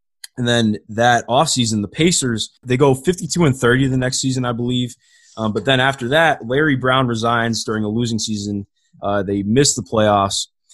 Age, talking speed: 20-39, 185 wpm